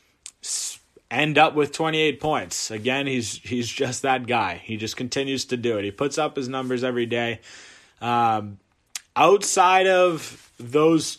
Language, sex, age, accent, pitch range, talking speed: English, male, 20-39, American, 120-145 Hz, 150 wpm